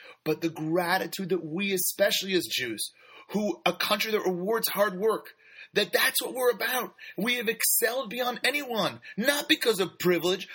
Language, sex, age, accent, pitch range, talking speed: English, male, 30-49, American, 145-200 Hz, 165 wpm